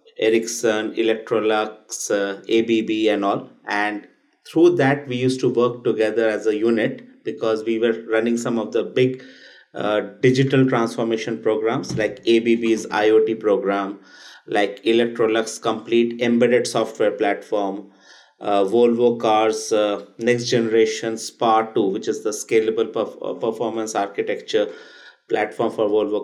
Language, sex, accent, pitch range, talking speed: English, male, Indian, 110-130 Hz, 130 wpm